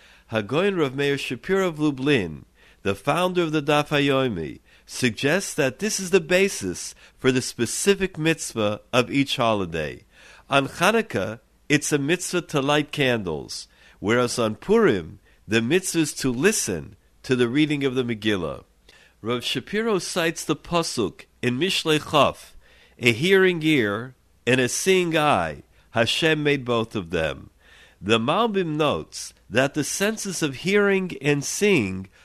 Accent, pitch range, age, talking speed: American, 120-175 Hz, 50-69, 140 wpm